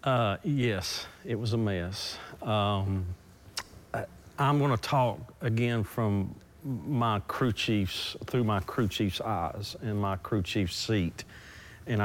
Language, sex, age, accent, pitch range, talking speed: English, male, 50-69, American, 100-125 Hz, 135 wpm